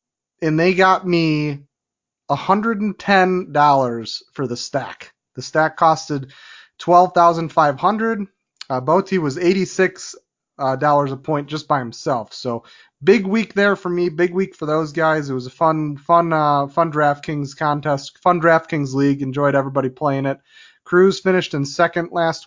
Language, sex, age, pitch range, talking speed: English, male, 30-49, 140-170 Hz, 145 wpm